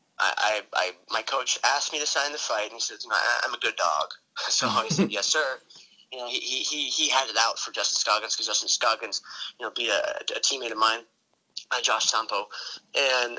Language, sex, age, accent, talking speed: English, male, 20-39, American, 210 wpm